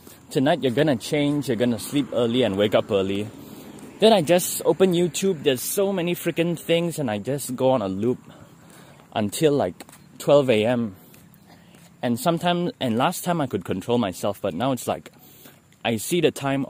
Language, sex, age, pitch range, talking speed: English, male, 20-39, 110-145 Hz, 185 wpm